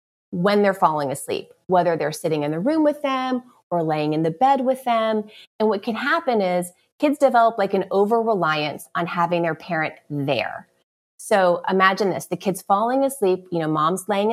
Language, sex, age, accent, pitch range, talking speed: English, female, 30-49, American, 175-215 Hz, 195 wpm